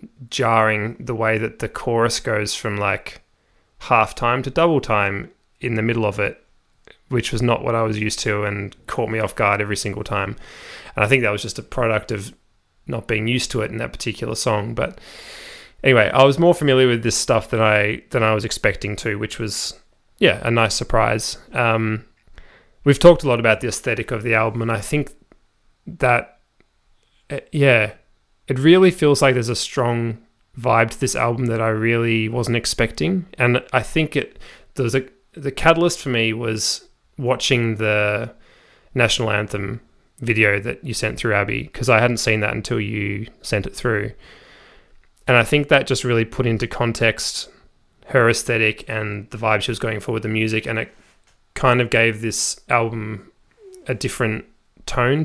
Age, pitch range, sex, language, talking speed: 20-39, 110-125 Hz, male, English, 180 wpm